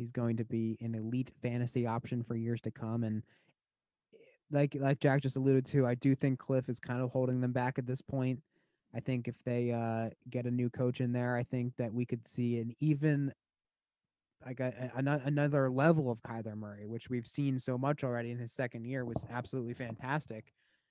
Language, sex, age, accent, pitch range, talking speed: English, male, 20-39, American, 120-140 Hz, 200 wpm